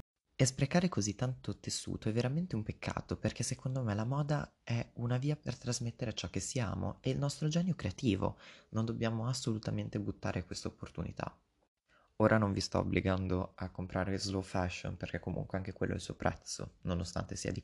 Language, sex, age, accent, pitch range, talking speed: Italian, male, 20-39, native, 95-125 Hz, 180 wpm